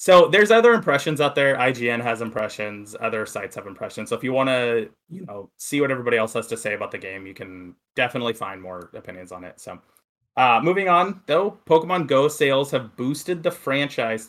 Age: 20-39